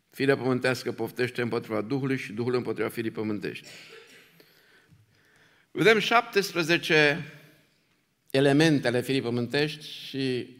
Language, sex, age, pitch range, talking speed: Romanian, male, 50-69, 125-190 Hz, 90 wpm